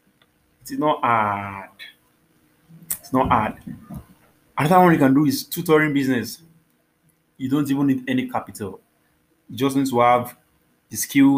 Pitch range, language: 105-130 Hz, English